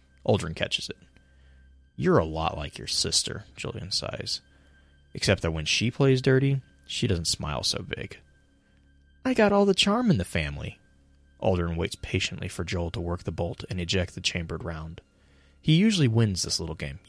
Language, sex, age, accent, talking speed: English, male, 20-39, American, 175 wpm